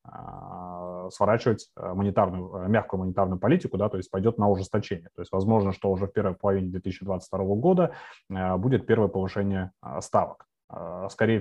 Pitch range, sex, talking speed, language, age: 95-110 Hz, male, 130 wpm, Russian, 20-39